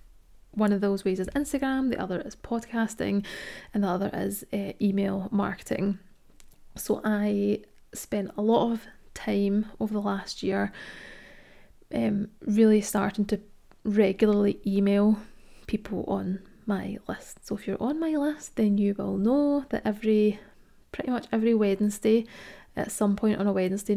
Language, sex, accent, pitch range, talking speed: English, female, British, 200-225 Hz, 150 wpm